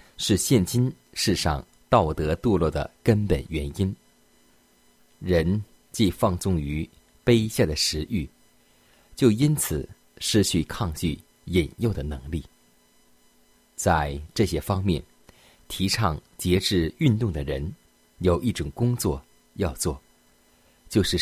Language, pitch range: Chinese, 75-100 Hz